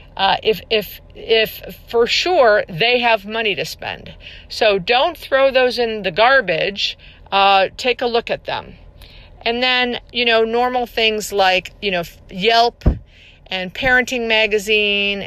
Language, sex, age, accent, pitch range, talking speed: English, female, 50-69, American, 190-245 Hz, 150 wpm